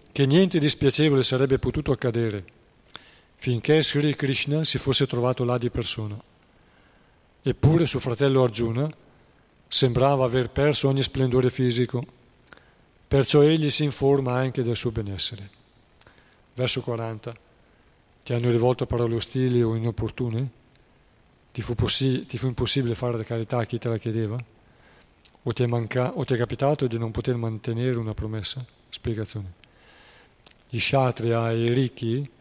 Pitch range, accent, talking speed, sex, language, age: 115-135 Hz, native, 130 wpm, male, Italian, 40-59